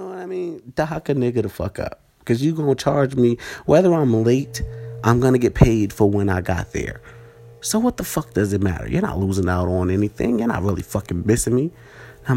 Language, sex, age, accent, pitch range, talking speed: English, male, 30-49, American, 95-115 Hz, 230 wpm